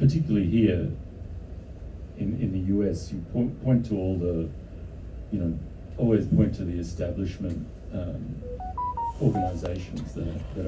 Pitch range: 85-95 Hz